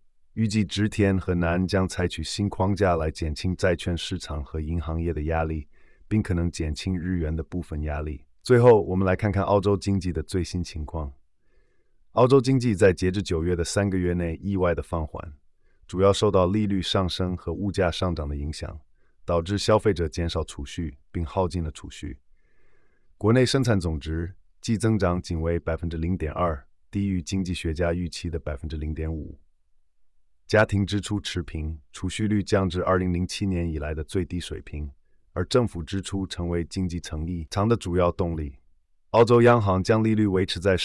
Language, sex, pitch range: Chinese, male, 80-100 Hz